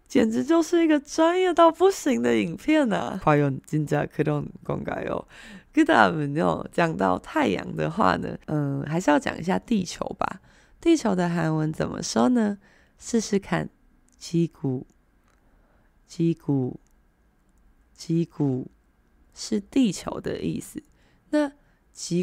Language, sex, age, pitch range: Chinese, female, 20-39, 155-260 Hz